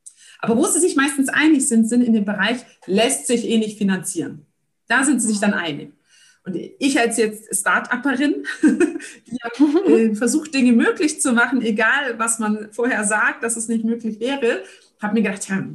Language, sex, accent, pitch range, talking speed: German, female, German, 200-260 Hz, 185 wpm